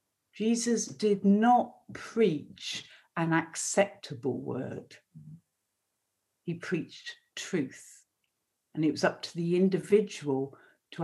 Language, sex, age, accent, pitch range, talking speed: English, female, 60-79, British, 155-220 Hz, 100 wpm